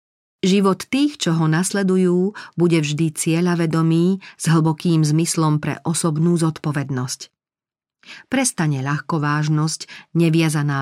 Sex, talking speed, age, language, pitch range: female, 95 wpm, 40-59, Slovak, 150-185 Hz